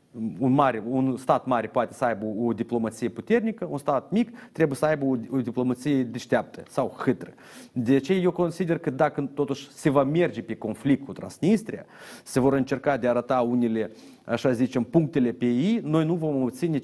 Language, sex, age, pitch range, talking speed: Romanian, male, 30-49, 120-155 Hz, 180 wpm